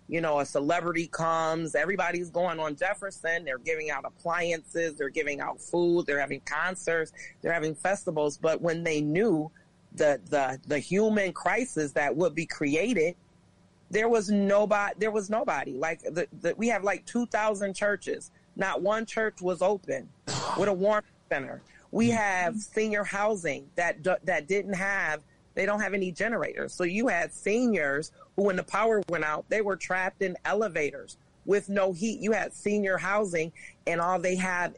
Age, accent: 30-49, American